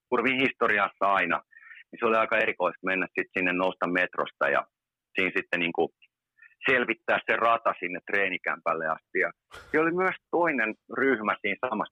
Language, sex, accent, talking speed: Finnish, male, native, 150 wpm